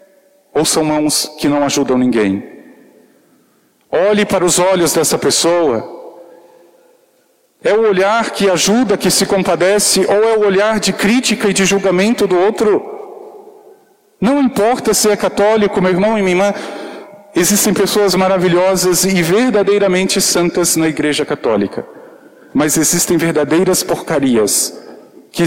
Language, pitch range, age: Portuguese, 170-215 Hz, 50-69